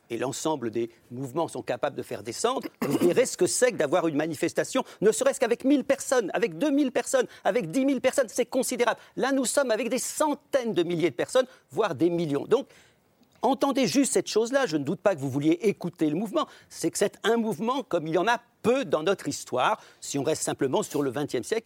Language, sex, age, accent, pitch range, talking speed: French, male, 50-69, French, 165-260 Hz, 225 wpm